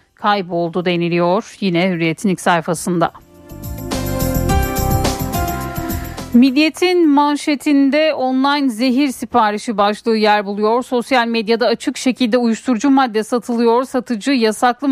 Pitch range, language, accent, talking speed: 210-255 Hz, Turkish, native, 95 wpm